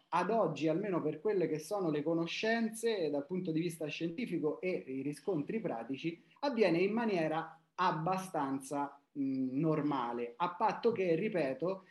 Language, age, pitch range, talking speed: Italian, 30-49, 160-205 Hz, 135 wpm